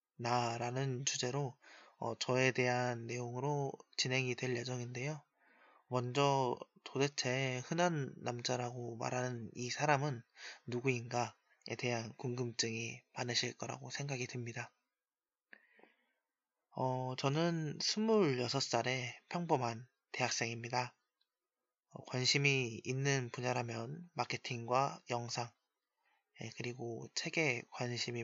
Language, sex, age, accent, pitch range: Korean, male, 20-39, native, 120-140 Hz